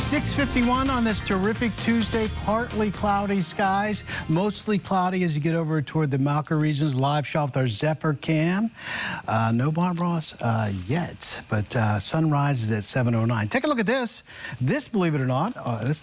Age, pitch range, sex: 50-69, 125-180 Hz, male